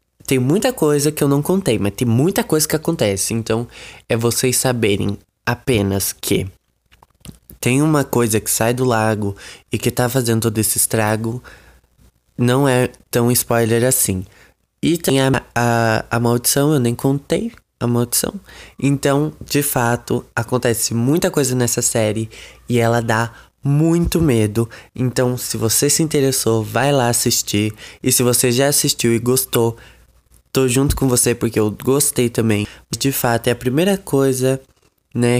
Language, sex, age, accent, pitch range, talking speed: Portuguese, male, 20-39, Brazilian, 115-140 Hz, 155 wpm